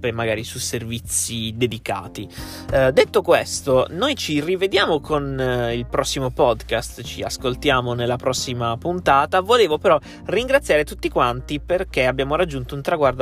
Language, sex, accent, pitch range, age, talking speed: Italian, male, native, 120-150 Hz, 20-39, 135 wpm